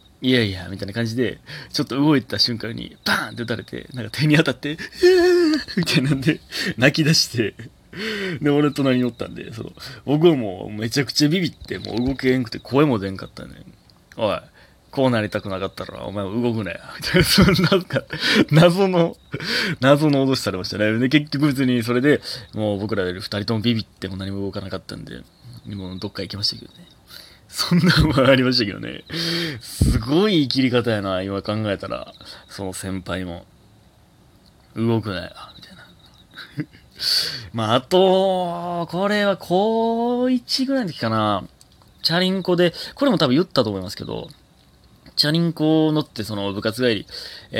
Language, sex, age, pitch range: Japanese, male, 30-49, 105-160 Hz